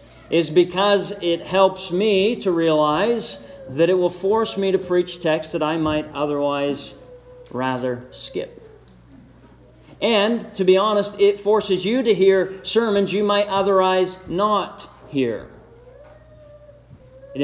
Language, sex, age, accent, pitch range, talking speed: English, male, 40-59, American, 135-185 Hz, 125 wpm